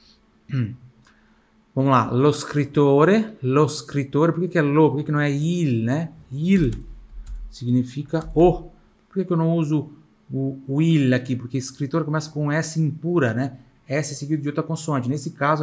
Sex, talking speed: male, 175 wpm